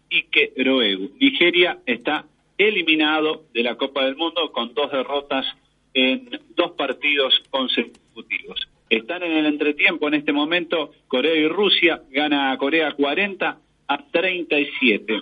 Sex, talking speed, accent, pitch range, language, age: male, 130 wpm, Argentinian, 135-180 Hz, Spanish, 40-59